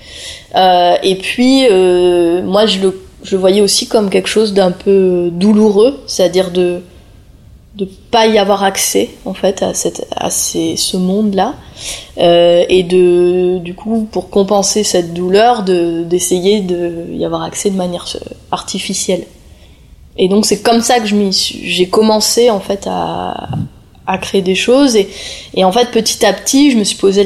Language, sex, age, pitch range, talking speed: French, female, 20-39, 180-210 Hz, 170 wpm